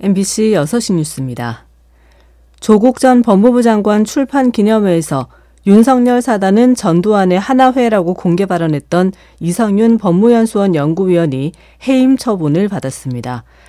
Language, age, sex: Korean, 40-59, female